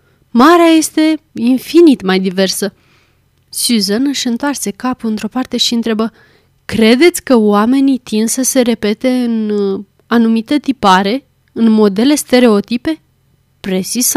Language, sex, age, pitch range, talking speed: Romanian, female, 30-49, 200-275 Hz, 115 wpm